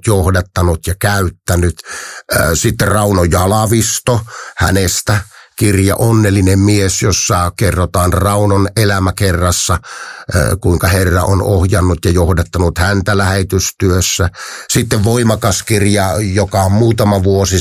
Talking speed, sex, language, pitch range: 95 wpm, male, Finnish, 90-110 Hz